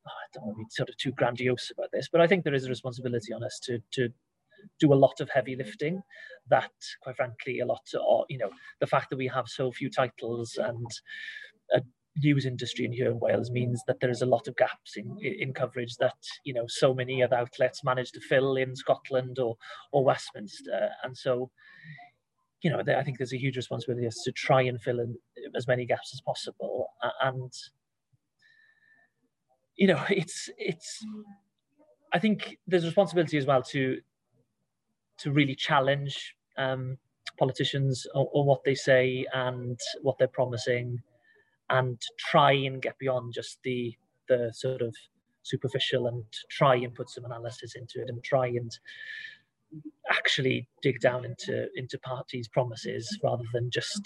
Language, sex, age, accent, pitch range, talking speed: English, male, 30-49, British, 125-145 Hz, 175 wpm